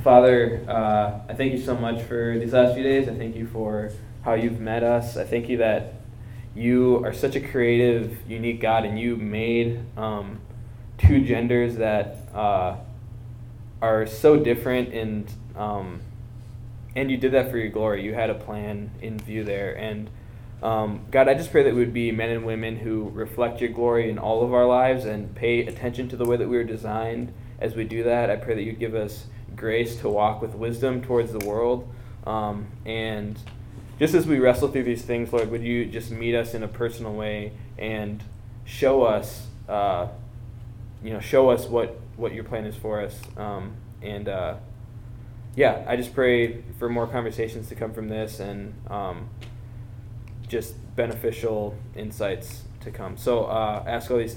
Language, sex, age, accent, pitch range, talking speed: English, male, 10-29, American, 110-120 Hz, 185 wpm